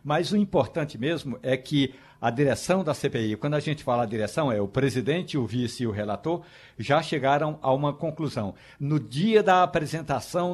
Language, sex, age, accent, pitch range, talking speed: Portuguese, male, 60-79, Brazilian, 130-150 Hz, 180 wpm